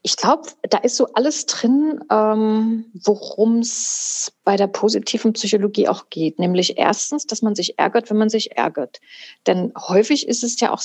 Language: German